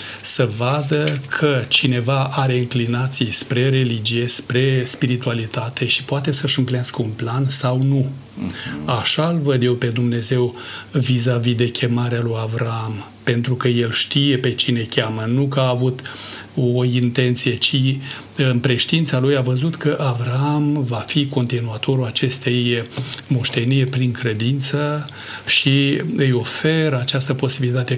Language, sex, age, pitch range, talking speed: Romanian, male, 40-59, 120-140 Hz, 135 wpm